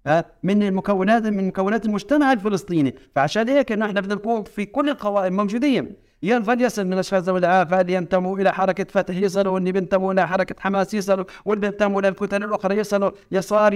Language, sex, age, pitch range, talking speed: Arabic, male, 60-79, 175-220 Hz, 160 wpm